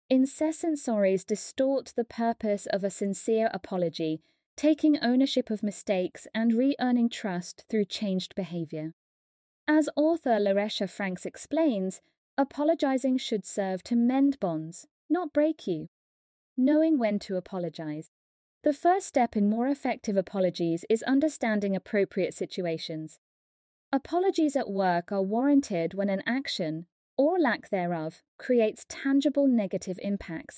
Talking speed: 125 wpm